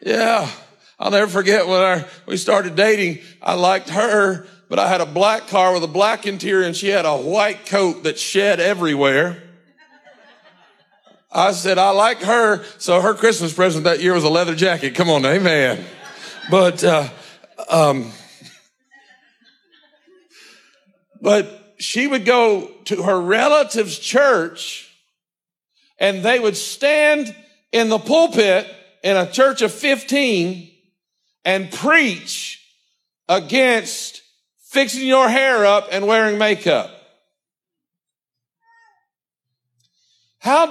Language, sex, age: English, male, 50-69